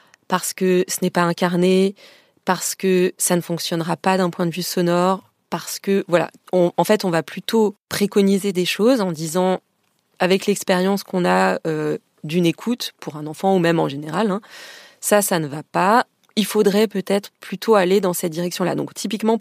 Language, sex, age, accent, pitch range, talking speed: French, female, 20-39, French, 175-215 Hz, 190 wpm